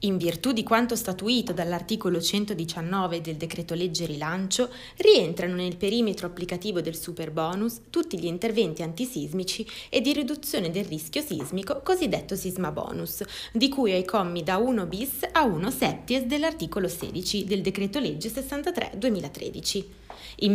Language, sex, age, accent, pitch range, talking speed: Italian, female, 20-39, native, 175-235 Hz, 140 wpm